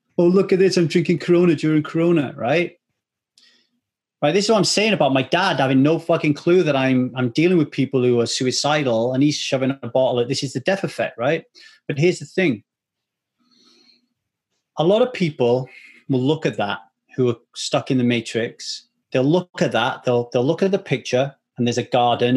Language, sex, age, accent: English, male, 30-49, British